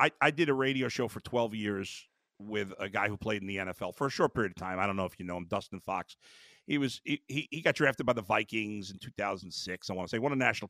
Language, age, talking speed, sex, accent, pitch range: English, 50-69, 275 wpm, male, American, 95-135 Hz